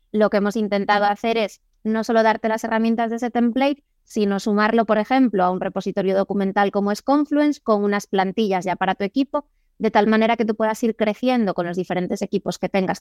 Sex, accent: female, Spanish